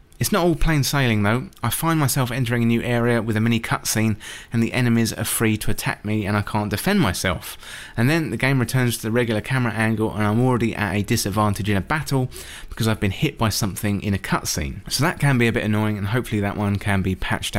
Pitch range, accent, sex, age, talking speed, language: 105-135 Hz, British, male, 20-39, 245 wpm, English